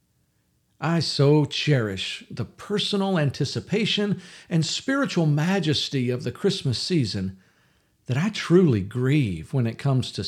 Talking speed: 125 wpm